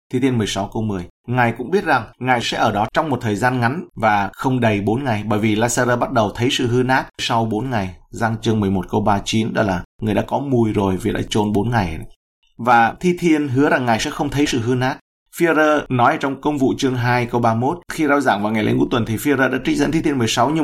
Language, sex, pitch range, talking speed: Vietnamese, male, 105-135 Hz, 260 wpm